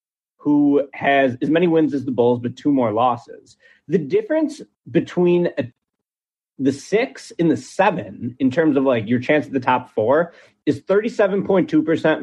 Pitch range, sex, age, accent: 130-205 Hz, male, 30-49, American